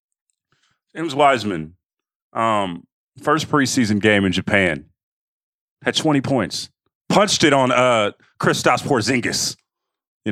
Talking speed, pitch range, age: 105 wpm, 105-145 Hz, 30-49